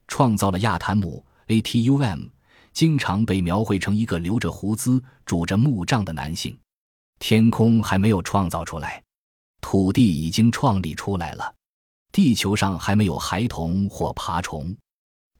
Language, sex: Chinese, male